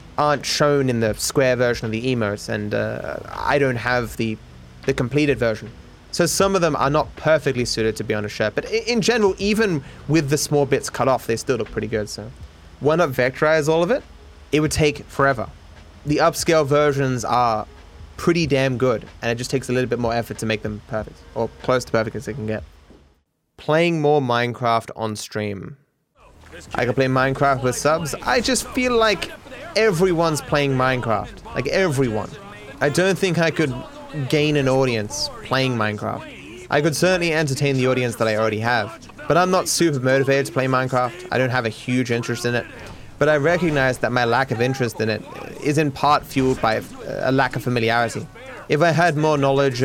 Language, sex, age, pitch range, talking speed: English, male, 20-39, 110-150 Hz, 200 wpm